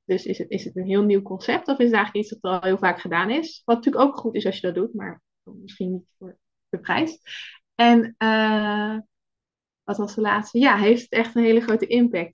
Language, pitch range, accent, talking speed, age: Dutch, 195-240 Hz, Dutch, 240 wpm, 20-39